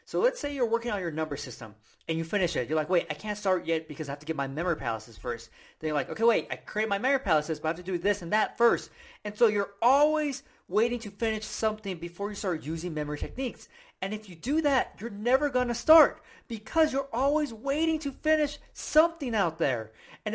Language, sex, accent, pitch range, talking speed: English, male, American, 170-265 Hz, 240 wpm